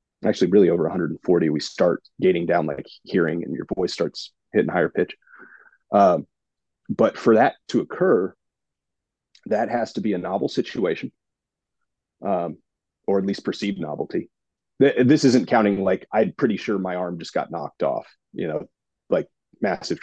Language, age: English, 30-49